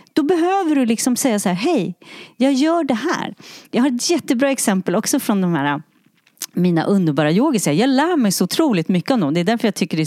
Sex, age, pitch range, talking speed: female, 30-49, 190-280 Hz, 225 wpm